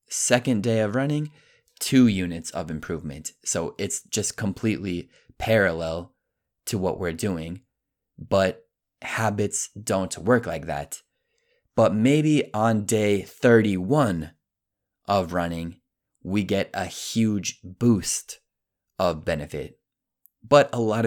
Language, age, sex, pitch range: Italian, 20-39, male, 90-115 Hz